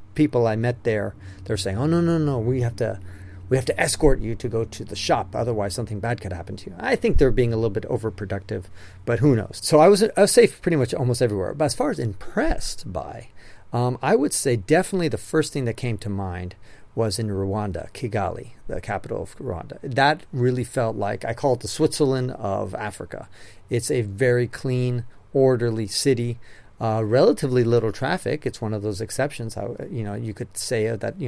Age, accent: 40-59, American